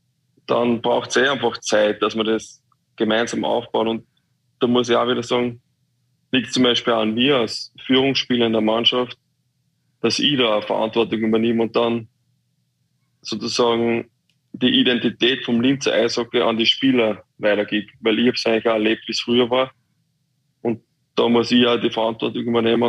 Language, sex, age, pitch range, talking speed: German, male, 20-39, 115-130 Hz, 175 wpm